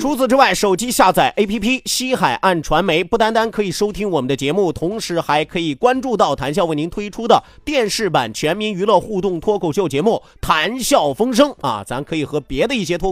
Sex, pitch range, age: male, 155-215 Hz, 30-49